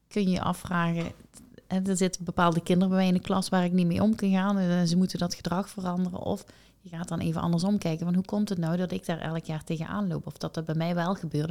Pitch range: 170-190 Hz